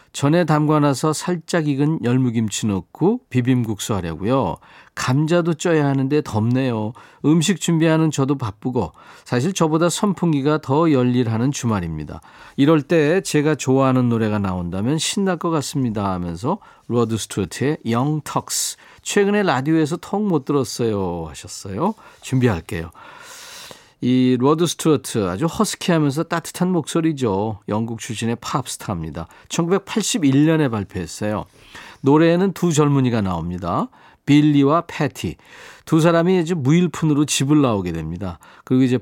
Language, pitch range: Korean, 110-165 Hz